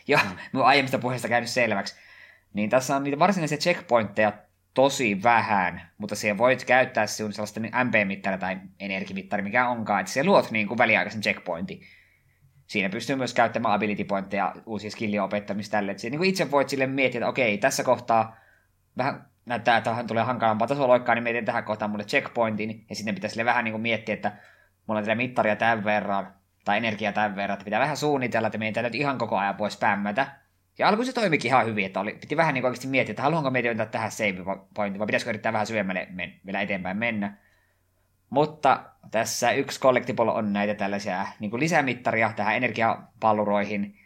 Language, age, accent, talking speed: Finnish, 20-39, native, 175 wpm